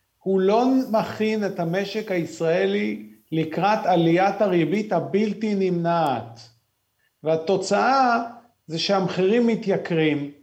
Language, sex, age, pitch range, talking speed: Hebrew, male, 40-59, 175-225 Hz, 85 wpm